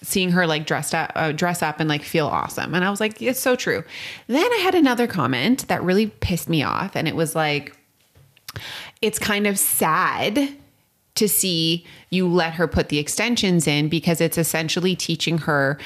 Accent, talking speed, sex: American, 195 wpm, female